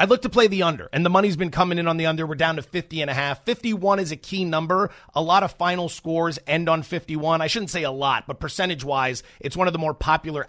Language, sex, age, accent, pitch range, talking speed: English, male, 30-49, American, 140-175 Hz, 275 wpm